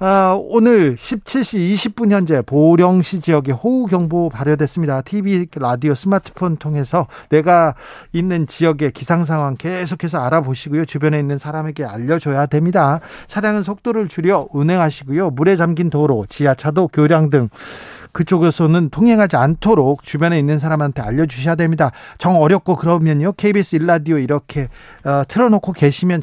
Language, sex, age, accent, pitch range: Korean, male, 40-59, native, 150-190 Hz